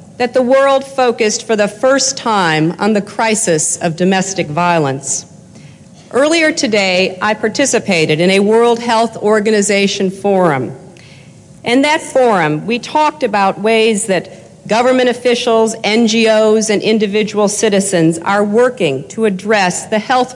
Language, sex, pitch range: English, female, 180-230 Hz